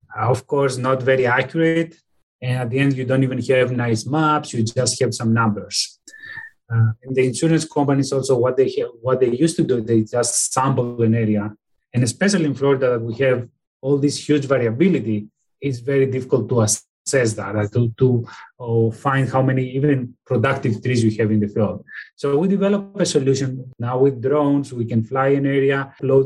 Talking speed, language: 190 wpm, English